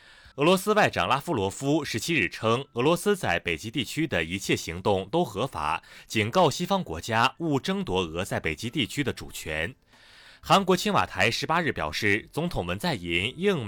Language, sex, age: Chinese, male, 30-49